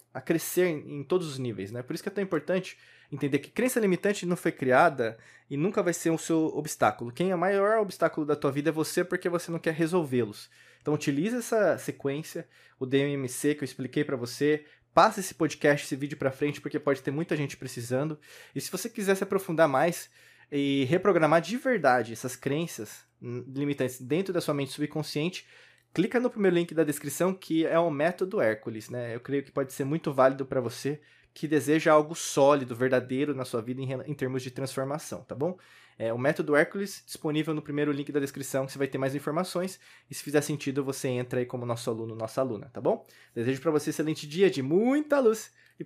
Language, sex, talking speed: Portuguese, male, 210 wpm